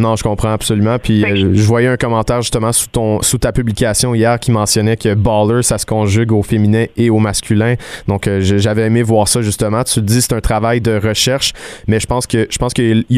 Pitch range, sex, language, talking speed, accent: 105-120 Hz, male, French, 230 wpm, Canadian